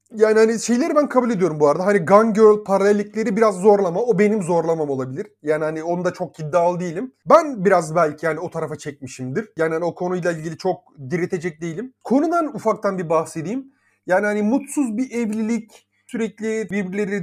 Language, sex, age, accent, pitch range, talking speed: Turkish, male, 30-49, native, 165-225 Hz, 180 wpm